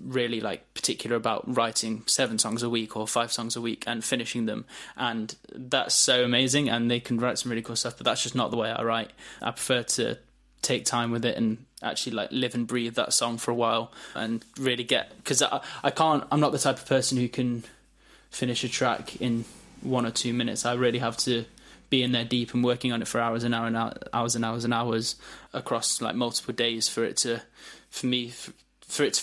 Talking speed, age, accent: 230 wpm, 10-29, British